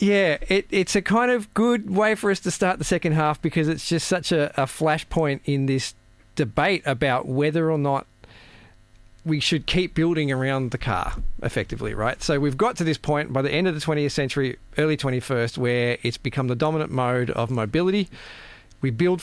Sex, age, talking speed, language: male, 40-59, 195 wpm, English